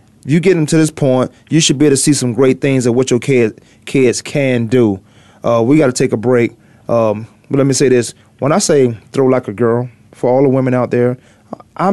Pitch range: 115-140 Hz